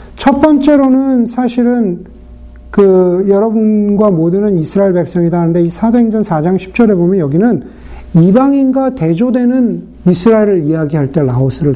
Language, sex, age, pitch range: Korean, male, 50-69, 155-225 Hz